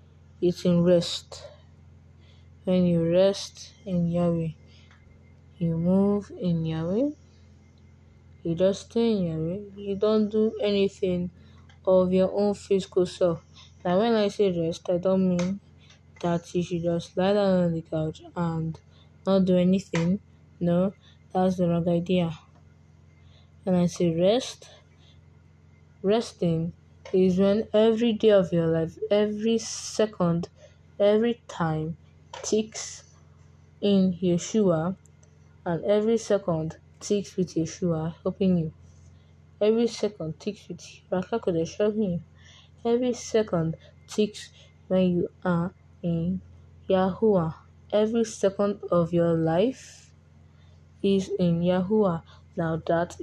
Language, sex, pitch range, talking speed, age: English, female, 155-195 Hz, 115 wpm, 20-39